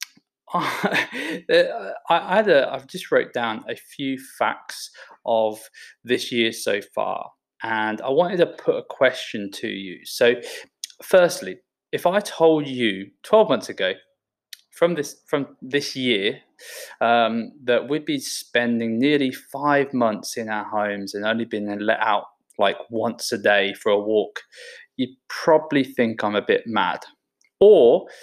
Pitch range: 115-185 Hz